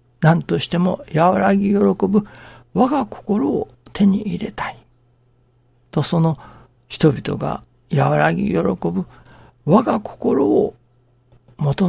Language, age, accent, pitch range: Japanese, 60-79, native, 120-170 Hz